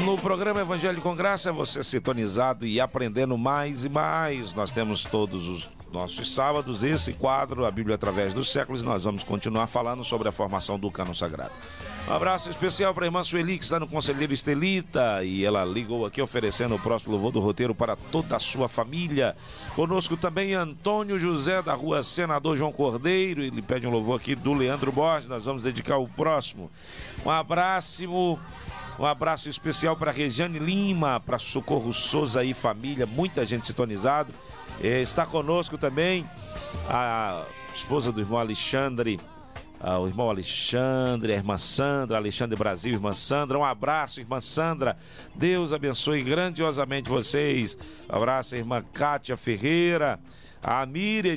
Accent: Brazilian